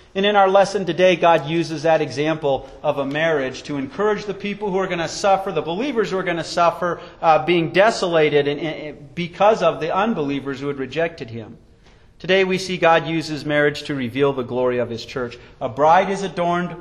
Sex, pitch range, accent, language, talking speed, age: male, 150-205 Hz, American, English, 200 wpm, 40-59